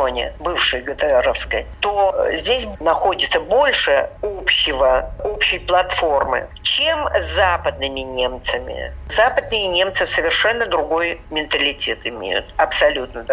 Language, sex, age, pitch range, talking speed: Russian, female, 50-69, 160-235 Hz, 85 wpm